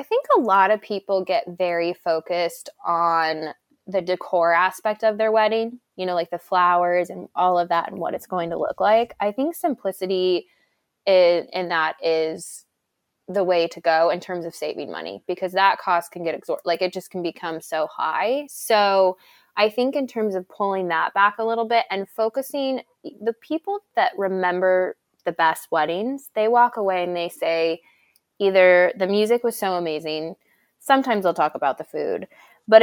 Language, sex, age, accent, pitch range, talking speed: English, female, 10-29, American, 170-215 Hz, 185 wpm